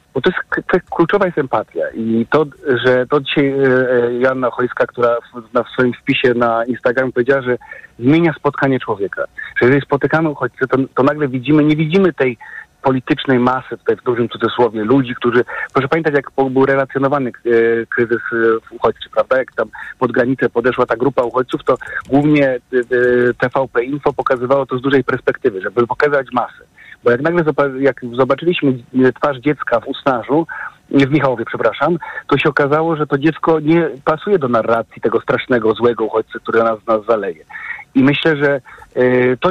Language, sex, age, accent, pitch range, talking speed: Polish, male, 40-59, native, 125-155 Hz, 170 wpm